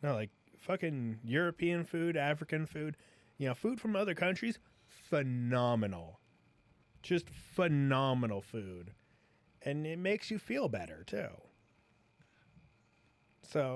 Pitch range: 115-155 Hz